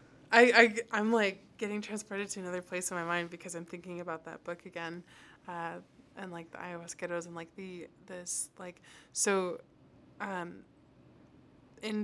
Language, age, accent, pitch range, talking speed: English, 20-39, American, 170-200 Hz, 165 wpm